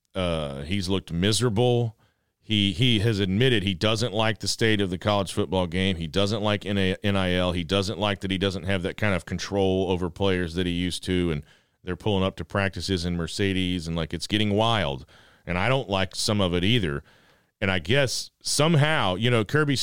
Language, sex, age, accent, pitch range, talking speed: English, male, 40-59, American, 95-125 Hz, 205 wpm